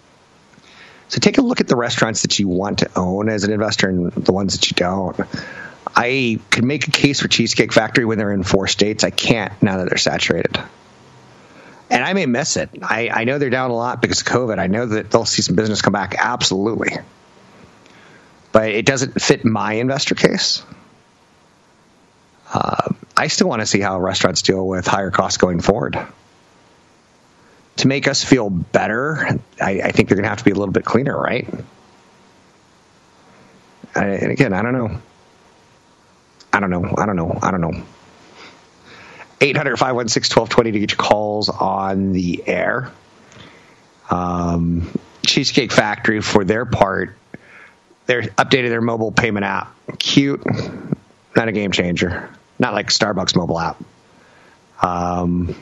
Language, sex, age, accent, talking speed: English, male, 30-49, American, 165 wpm